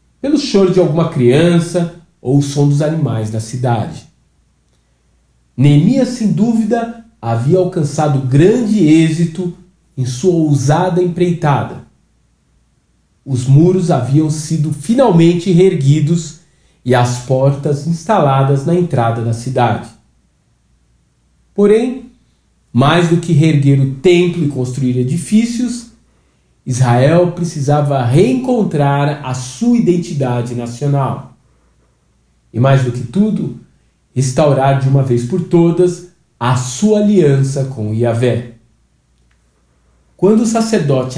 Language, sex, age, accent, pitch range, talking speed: Portuguese, male, 40-59, Brazilian, 125-185 Hz, 105 wpm